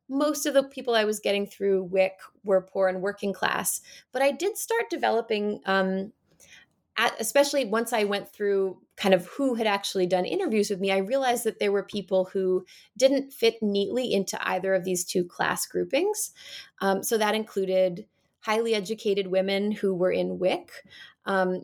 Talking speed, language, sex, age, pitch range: 175 wpm, English, female, 20-39, 185-225 Hz